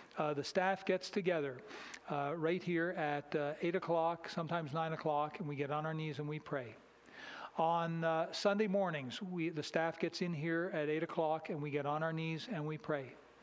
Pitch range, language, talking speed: 155-190 Hz, English, 205 wpm